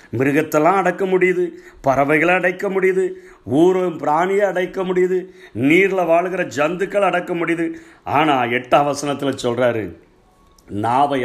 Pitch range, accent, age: 145-185 Hz, native, 50-69